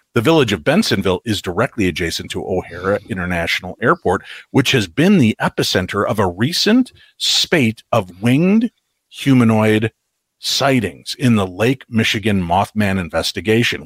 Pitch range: 100-125 Hz